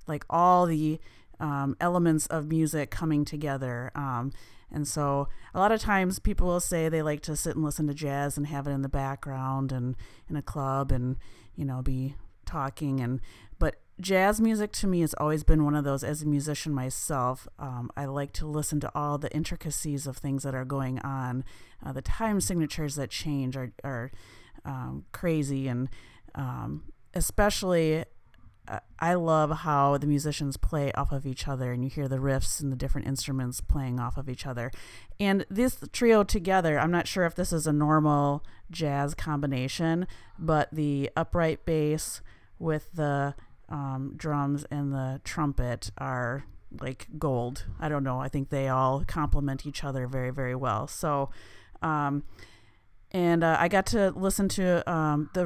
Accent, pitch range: American, 130-155 Hz